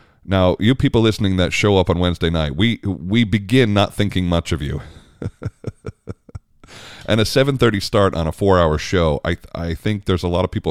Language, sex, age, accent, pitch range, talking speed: English, male, 30-49, American, 85-105 Hz, 190 wpm